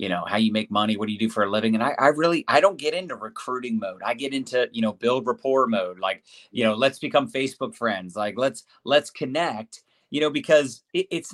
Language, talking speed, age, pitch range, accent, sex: English, 250 wpm, 30-49, 125-180 Hz, American, male